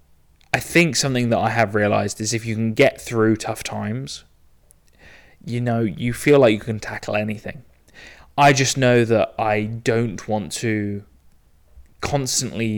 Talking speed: 155 wpm